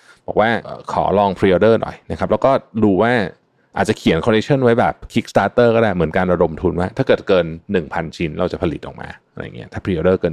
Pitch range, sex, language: 85-120 Hz, male, Thai